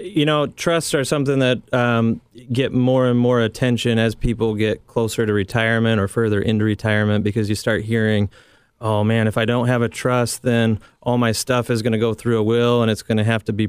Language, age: English, 30-49